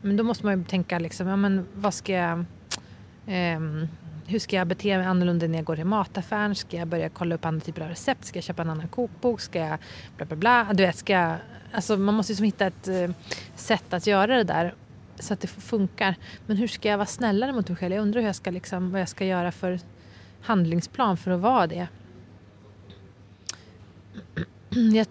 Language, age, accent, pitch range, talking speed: Swedish, 30-49, native, 170-220 Hz, 215 wpm